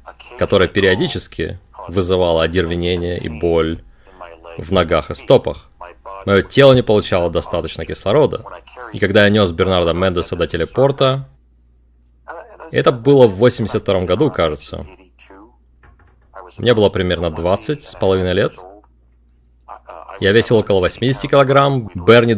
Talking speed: 115 wpm